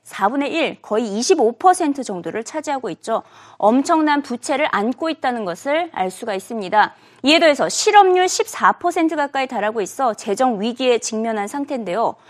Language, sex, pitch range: Korean, female, 225-340 Hz